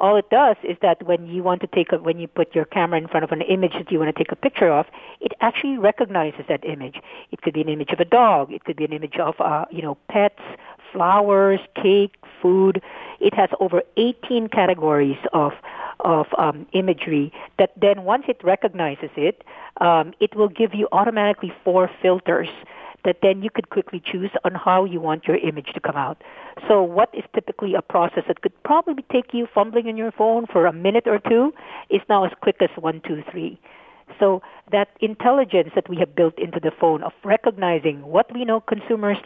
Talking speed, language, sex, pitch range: 210 wpm, English, female, 175-235 Hz